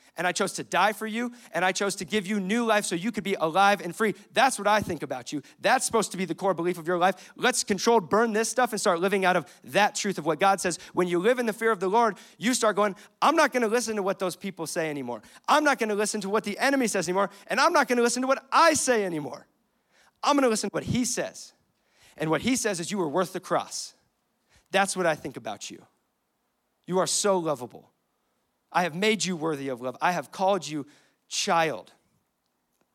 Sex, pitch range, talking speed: male, 155-215 Hz, 245 wpm